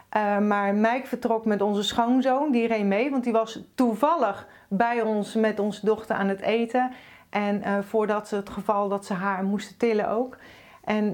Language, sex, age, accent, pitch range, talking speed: Dutch, female, 40-59, Dutch, 215-260 Hz, 190 wpm